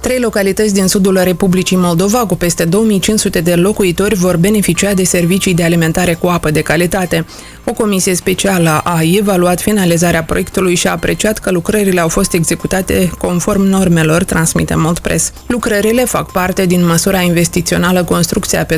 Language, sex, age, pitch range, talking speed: Romanian, female, 20-39, 170-195 Hz, 155 wpm